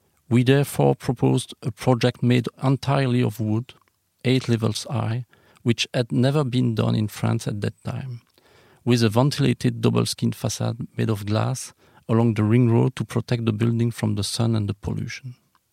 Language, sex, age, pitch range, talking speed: French, male, 40-59, 115-130 Hz, 170 wpm